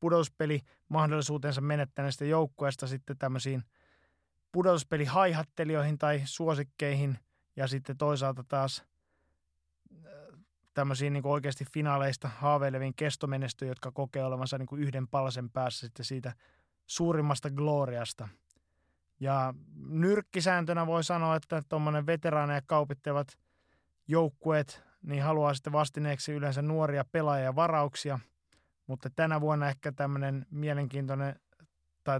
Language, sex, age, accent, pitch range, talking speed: Finnish, male, 20-39, native, 130-150 Hz, 100 wpm